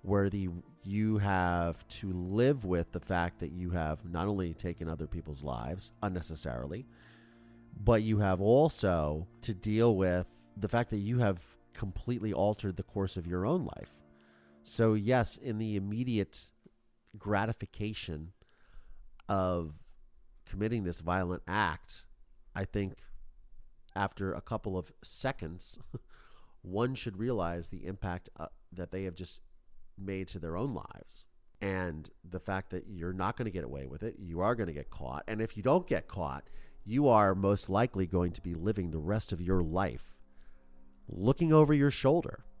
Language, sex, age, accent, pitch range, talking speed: English, male, 30-49, American, 85-110 Hz, 160 wpm